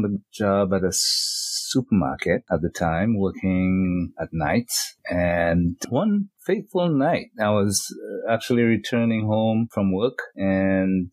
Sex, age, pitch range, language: male, 30-49, 95-115 Hz, English